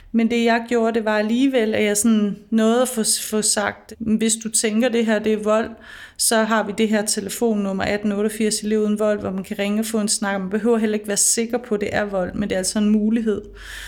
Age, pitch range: 30-49, 205-225 Hz